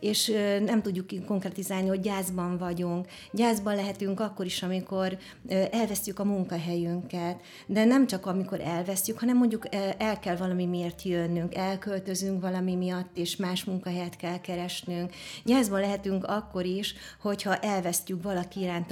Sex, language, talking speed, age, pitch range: female, Hungarian, 135 wpm, 30-49, 175-195 Hz